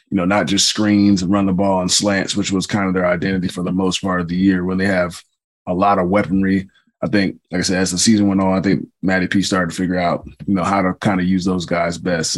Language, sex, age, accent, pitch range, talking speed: English, male, 20-39, American, 90-105 Hz, 285 wpm